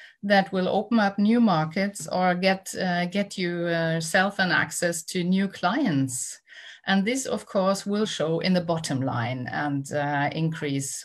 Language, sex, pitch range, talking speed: Romanian, female, 155-200 Hz, 165 wpm